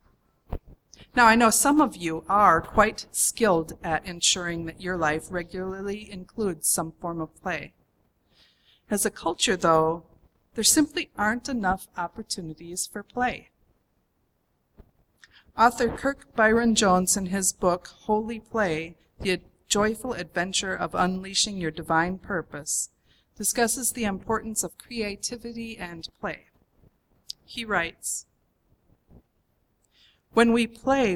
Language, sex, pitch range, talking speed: English, female, 175-225 Hz, 115 wpm